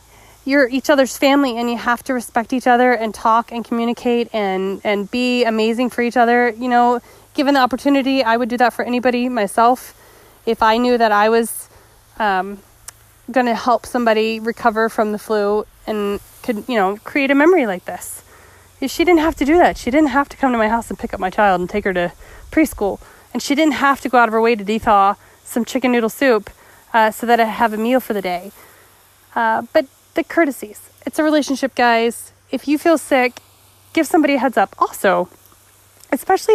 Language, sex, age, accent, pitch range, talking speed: English, female, 20-39, American, 215-280 Hz, 210 wpm